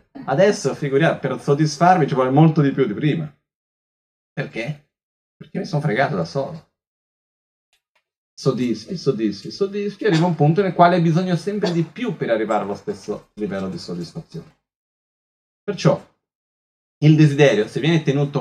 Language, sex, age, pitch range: Italian, male, 30-49, 125-175 Hz